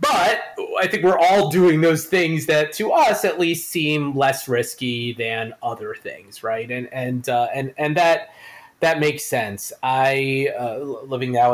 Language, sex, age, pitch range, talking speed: English, male, 30-49, 130-175 Hz, 170 wpm